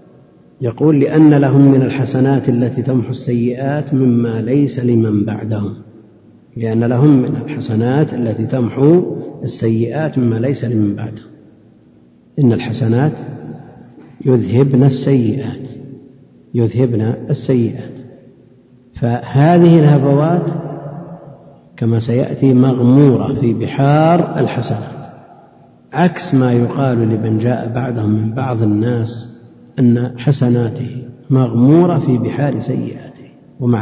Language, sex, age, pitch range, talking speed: Arabic, male, 50-69, 120-140 Hz, 95 wpm